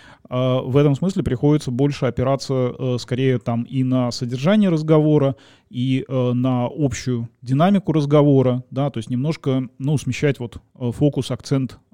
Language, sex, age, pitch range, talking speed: Russian, male, 20-39, 125-140 Hz, 130 wpm